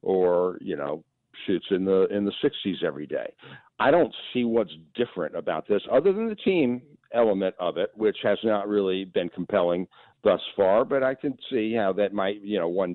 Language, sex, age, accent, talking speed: English, male, 50-69, American, 200 wpm